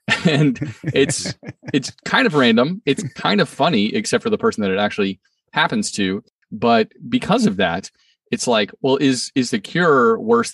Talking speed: 175 wpm